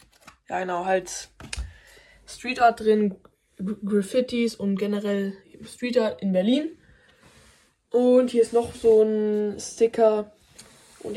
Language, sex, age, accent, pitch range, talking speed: German, female, 10-29, German, 195-235 Hz, 95 wpm